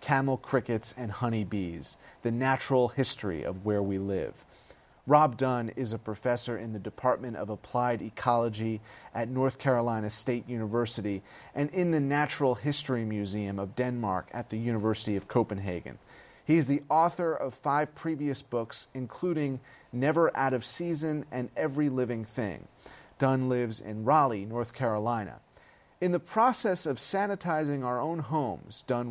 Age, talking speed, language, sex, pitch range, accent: 30-49, 150 wpm, English, male, 115-145 Hz, American